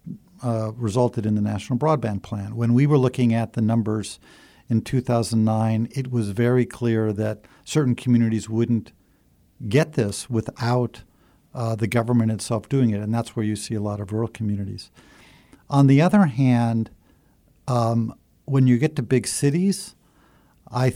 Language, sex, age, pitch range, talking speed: English, male, 50-69, 110-135 Hz, 155 wpm